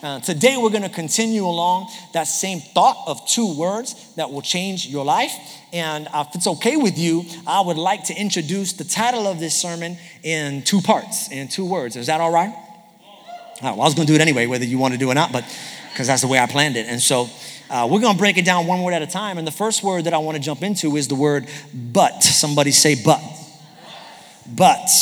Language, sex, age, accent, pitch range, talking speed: English, male, 30-49, American, 155-215 Hz, 235 wpm